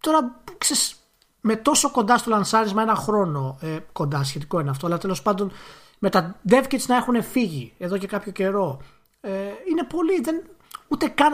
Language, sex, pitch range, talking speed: Greek, male, 150-230 Hz, 175 wpm